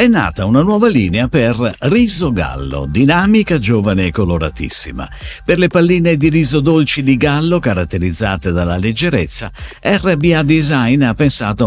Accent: native